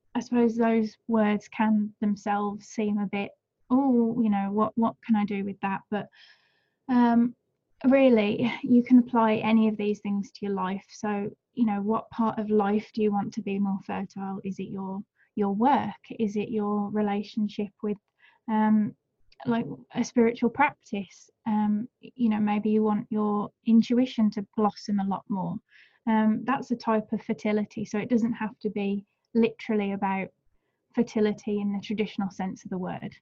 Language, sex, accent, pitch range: English, female, British, 205-235 Hz